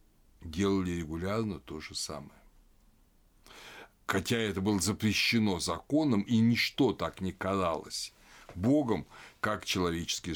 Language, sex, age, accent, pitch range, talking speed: Russian, male, 60-79, native, 95-115 Hz, 105 wpm